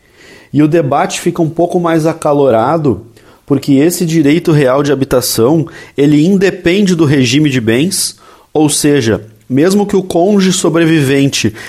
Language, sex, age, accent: Portuguese, male, 30-49, Brazilian